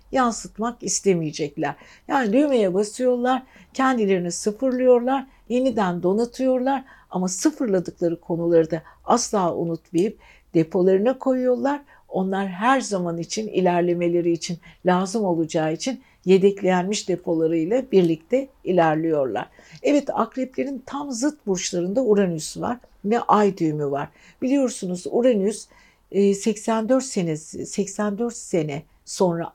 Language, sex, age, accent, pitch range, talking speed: Turkish, female, 60-79, native, 170-235 Hz, 95 wpm